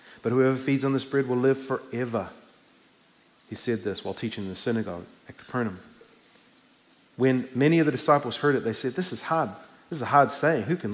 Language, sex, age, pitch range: English, male, 40-59, 125-165 Hz